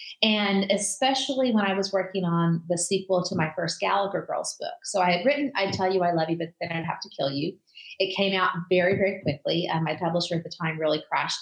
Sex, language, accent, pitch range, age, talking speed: female, English, American, 170-220 Hz, 30-49, 240 wpm